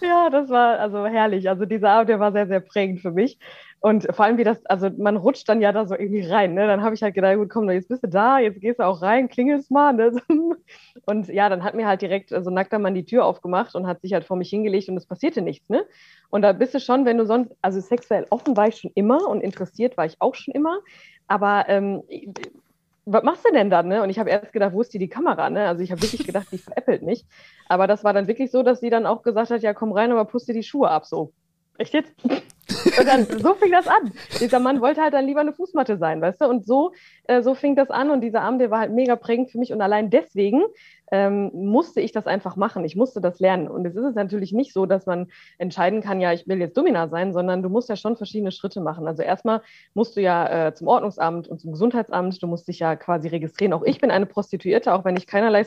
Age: 20-39